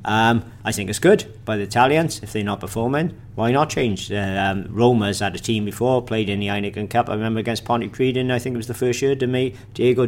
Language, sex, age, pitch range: English, male, 50-69, 105-120 Hz